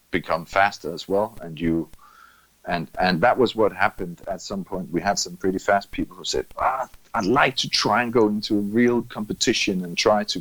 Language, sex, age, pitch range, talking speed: English, male, 40-59, 95-115 Hz, 215 wpm